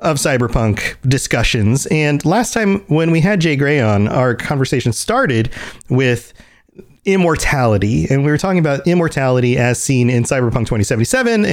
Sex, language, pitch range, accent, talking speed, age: male, English, 115-160 Hz, American, 145 wpm, 30-49